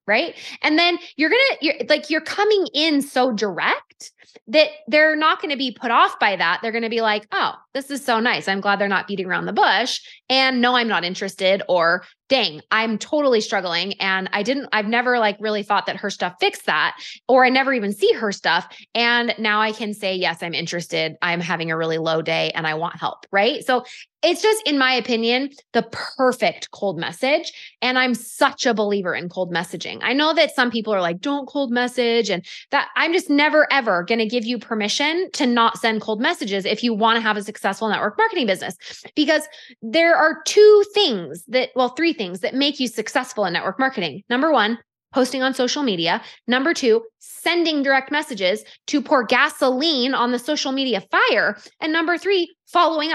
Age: 20-39